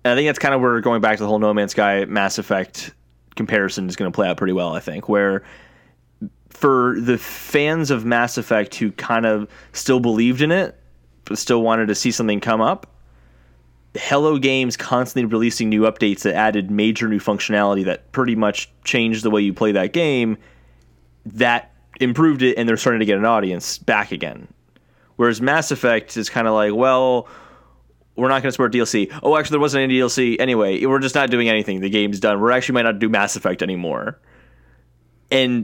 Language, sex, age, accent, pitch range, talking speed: English, male, 20-39, American, 100-130 Hz, 200 wpm